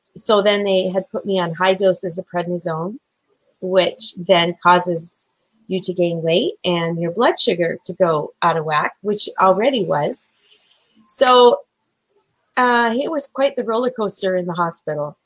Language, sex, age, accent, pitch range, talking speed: English, female, 30-49, American, 170-205 Hz, 160 wpm